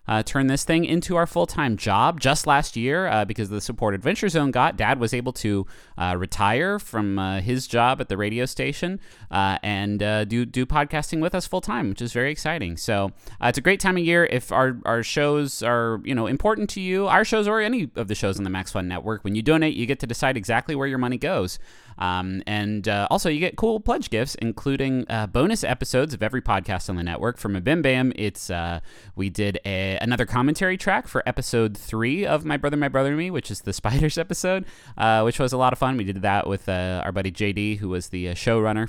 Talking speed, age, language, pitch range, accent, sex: 235 wpm, 30-49, English, 105-150 Hz, American, male